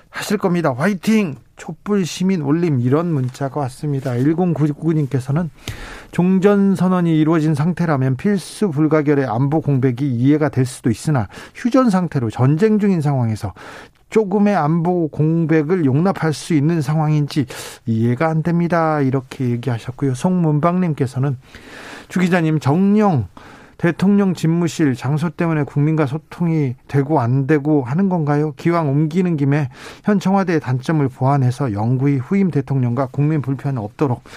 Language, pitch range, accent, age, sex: Korean, 140-185 Hz, native, 40-59, male